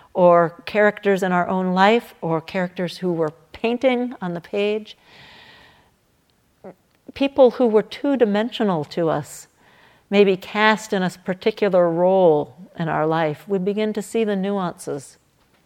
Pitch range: 175-210 Hz